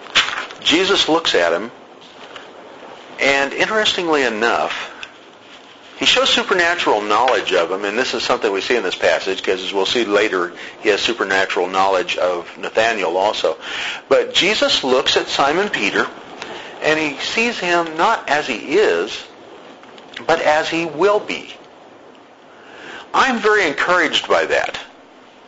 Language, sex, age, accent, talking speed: English, male, 50-69, American, 135 wpm